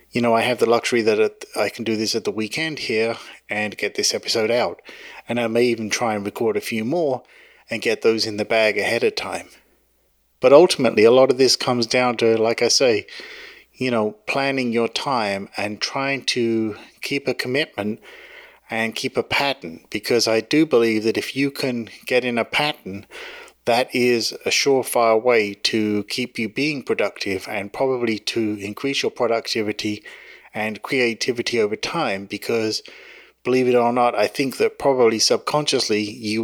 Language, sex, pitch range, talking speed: English, male, 110-135 Hz, 180 wpm